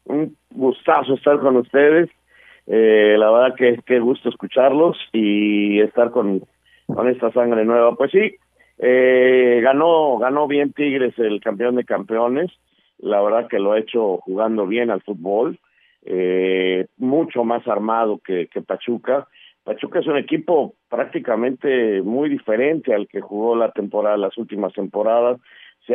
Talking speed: 145 wpm